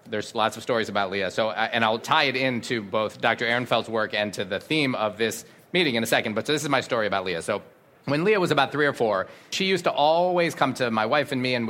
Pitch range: 120-175 Hz